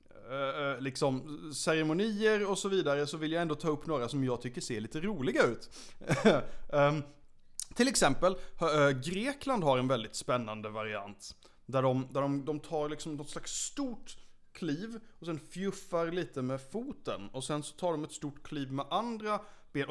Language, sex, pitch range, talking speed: Swedish, male, 130-180 Hz, 155 wpm